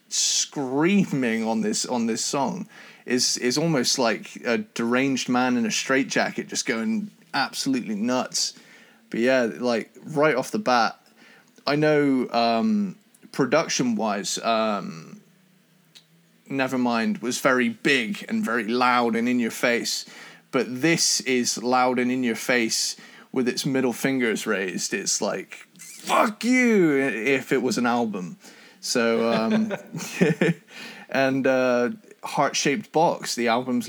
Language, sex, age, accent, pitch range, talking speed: English, male, 30-49, British, 120-190 Hz, 135 wpm